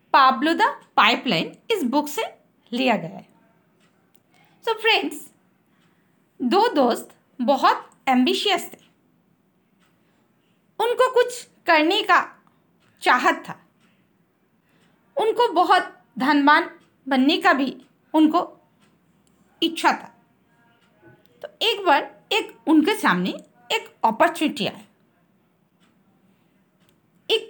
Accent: native